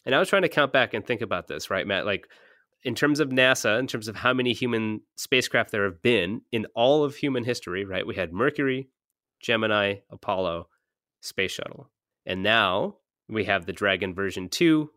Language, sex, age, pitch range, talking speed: English, male, 30-49, 105-145 Hz, 195 wpm